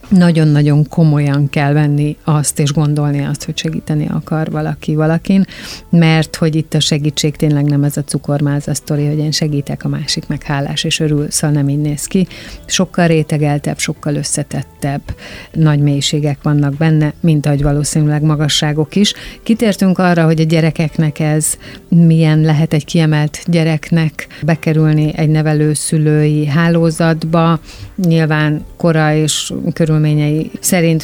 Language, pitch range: Hungarian, 150-165 Hz